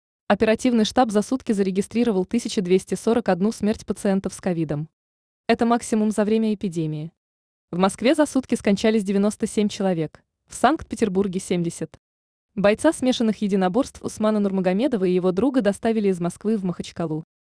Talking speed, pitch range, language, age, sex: 130 wpm, 185-225 Hz, Russian, 20-39, female